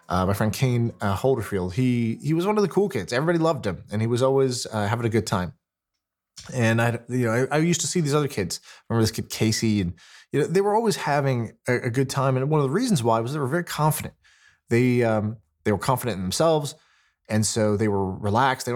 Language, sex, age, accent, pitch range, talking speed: English, male, 20-39, American, 105-140 Hz, 250 wpm